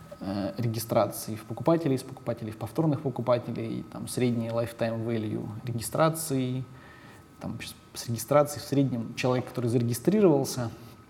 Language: Russian